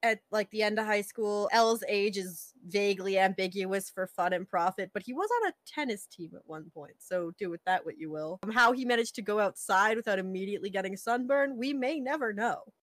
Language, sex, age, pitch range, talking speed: English, female, 20-39, 195-255 Hz, 230 wpm